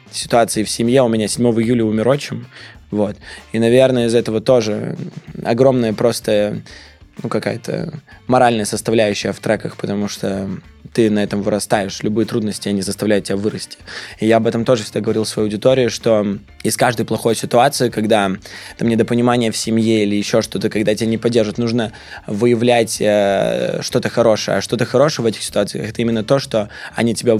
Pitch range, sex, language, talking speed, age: 105-120 Hz, male, Russian, 170 wpm, 20-39